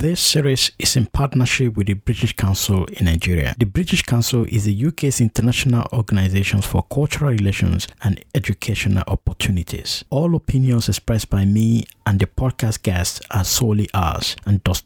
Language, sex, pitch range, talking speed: English, male, 100-135 Hz, 160 wpm